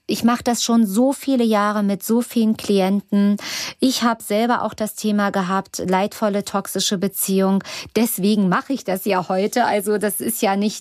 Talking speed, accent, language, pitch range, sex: 180 wpm, German, German, 190-225 Hz, female